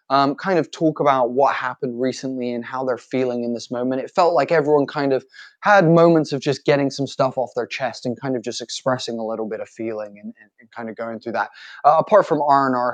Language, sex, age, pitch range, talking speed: English, male, 20-39, 120-150 Hz, 245 wpm